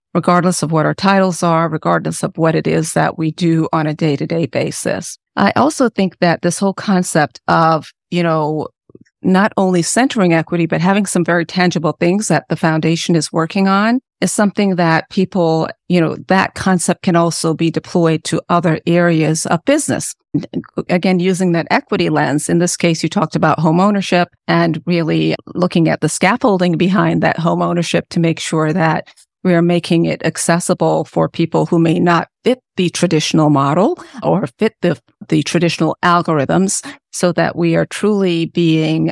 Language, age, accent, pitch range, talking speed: English, 40-59, American, 160-185 Hz, 180 wpm